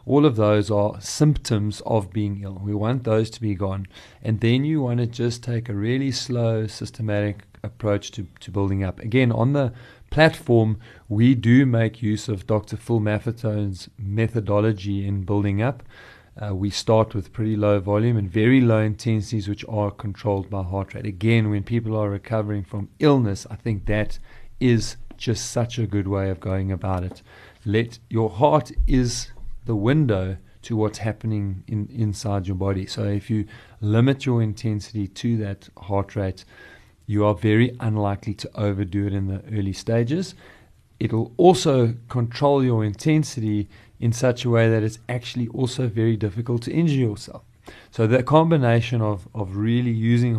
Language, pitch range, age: English, 105-120 Hz, 40-59